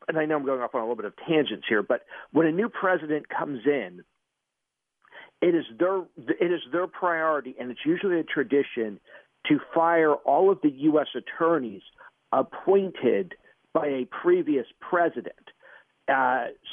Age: 50-69